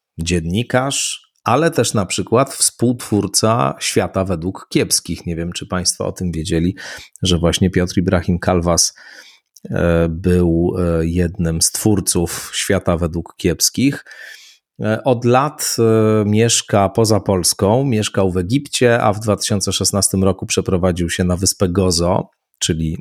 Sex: male